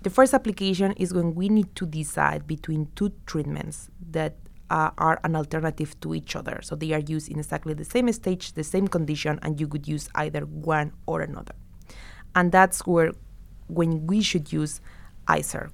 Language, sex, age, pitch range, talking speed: English, female, 20-39, 150-180 Hz, 185 wpm